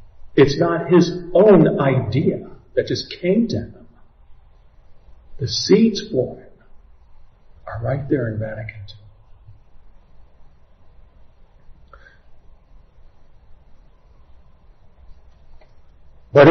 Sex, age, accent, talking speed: male, 50-69, American, 75 wpm